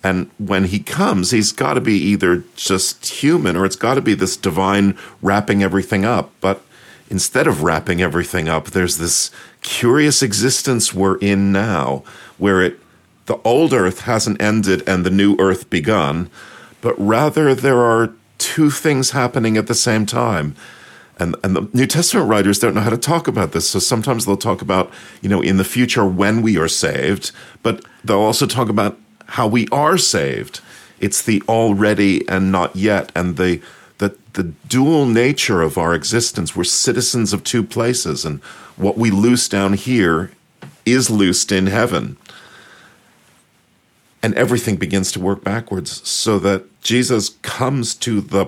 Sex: male